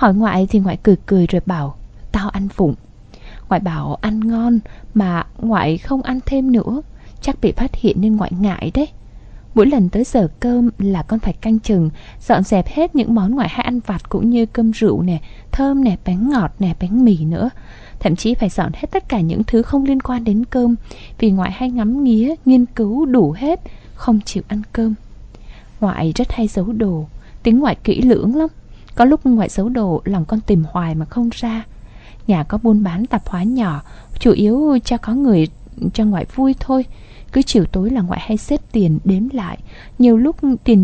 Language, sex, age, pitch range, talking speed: Vietnamese, female, 20-39, 180-240 Hz, 205 wpm